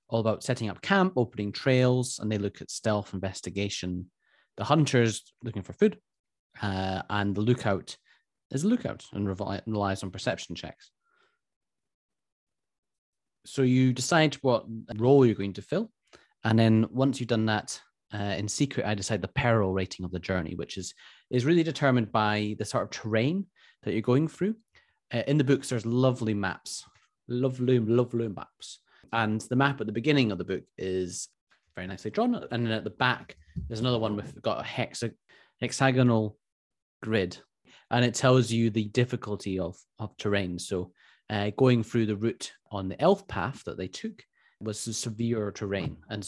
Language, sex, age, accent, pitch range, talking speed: English, male, 30-49, British, 100-130 Hz, 170 wpm